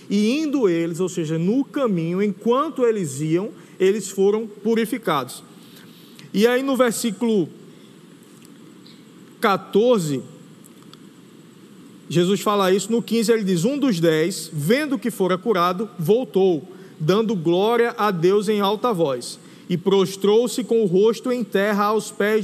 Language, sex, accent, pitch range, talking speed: Portuguese, male, Brazilian, 185-235 Hz, 130 wpm